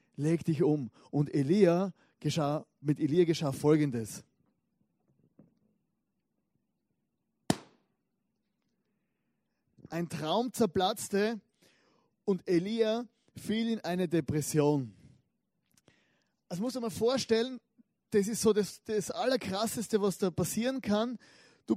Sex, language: male, German